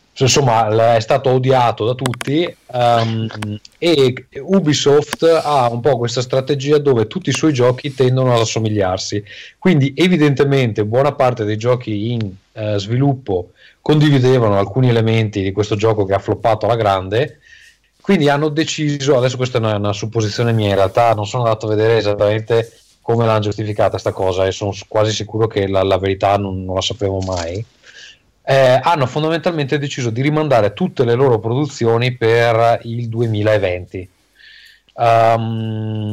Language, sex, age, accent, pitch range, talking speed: Italian, male, 30-49, native, 105-130 Hz, 155 wpm